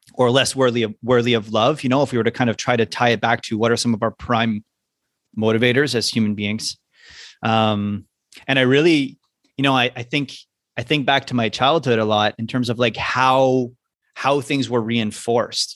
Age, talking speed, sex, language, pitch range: 30-49, 215 wpm, male, English, 110-130 Hz